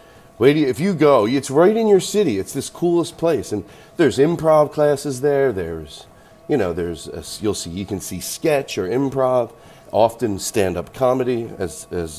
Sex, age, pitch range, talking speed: male, 40-59, 90-135 Hz, 175 wpm